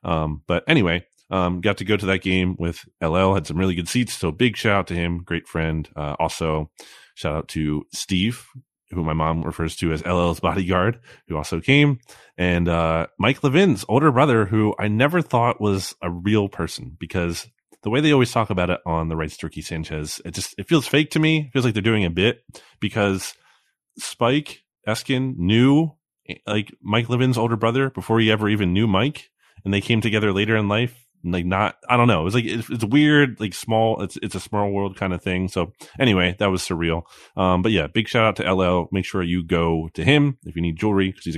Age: 30-49